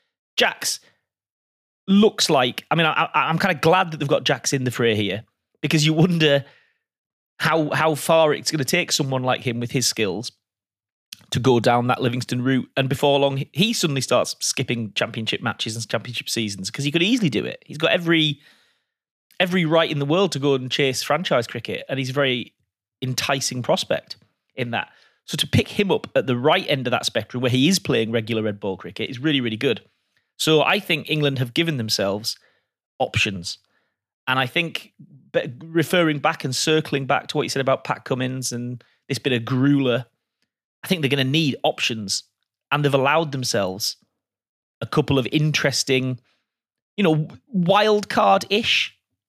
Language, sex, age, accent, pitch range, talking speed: English, male, 30-49, British, 120-160 Hz, 185 wpm